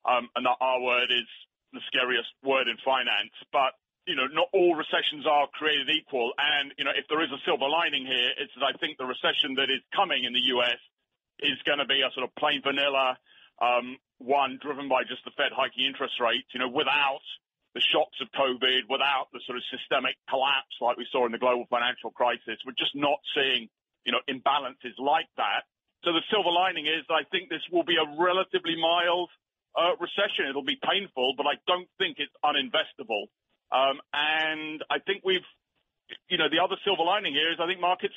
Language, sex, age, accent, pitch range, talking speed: English, male, 40-59, British, 130-170 Hz, 205 wpm